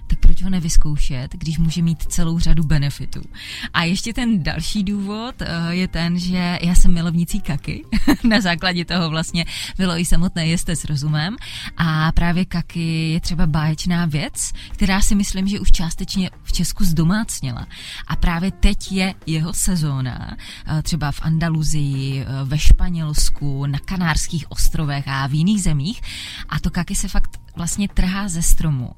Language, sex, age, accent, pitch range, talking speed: Czech, female, 20-39, native, 155-185 Hz, 155 wpm